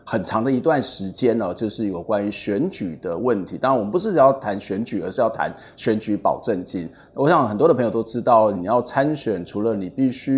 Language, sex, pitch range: Chinese, male, 110-150 Hz